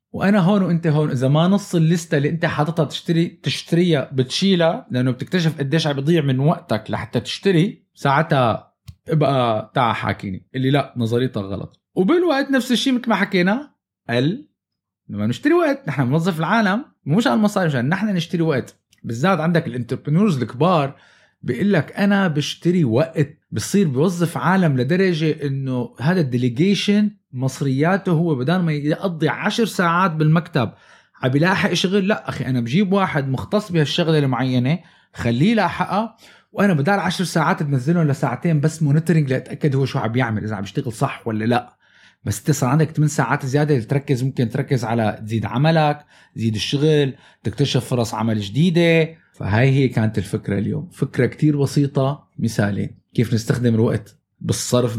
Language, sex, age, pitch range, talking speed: Arabic, male, 20-39, 130-175 Hz, 150 wpm